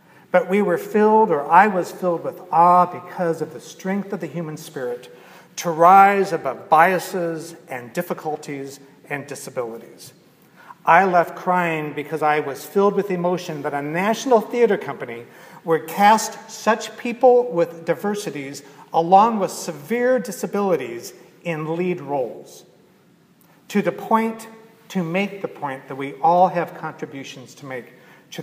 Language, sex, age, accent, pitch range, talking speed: English, male, 50-69, American, 145-190 Hz, 145 wpm